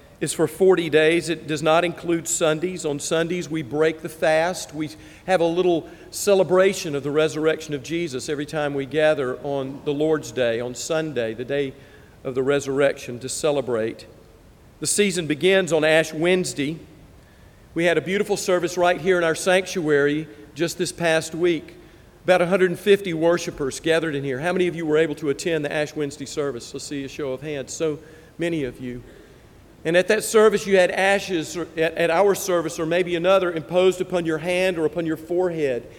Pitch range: 145-180 Hz